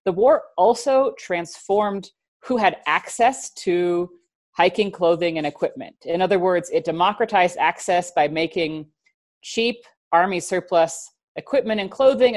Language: English